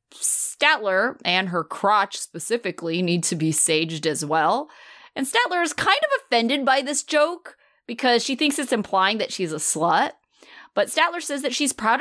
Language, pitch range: English, 175-250 Hz